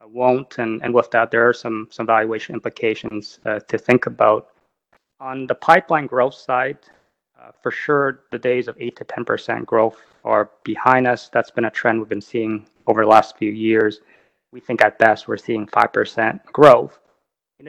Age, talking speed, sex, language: 30-49, 185 wpm, male, English